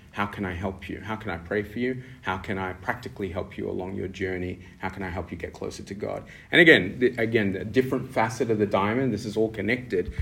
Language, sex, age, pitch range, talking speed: English, male, 30-49, 95-105 Hz, 255 wpm